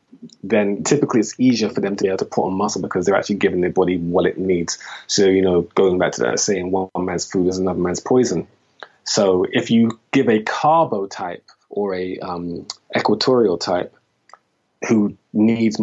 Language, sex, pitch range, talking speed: English, male, 90-105 Hz, 195 wpm